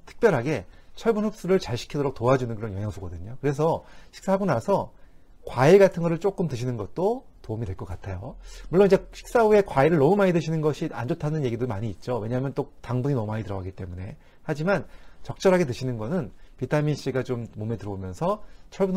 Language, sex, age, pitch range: Korean, male, 40-59, 105-170 Hz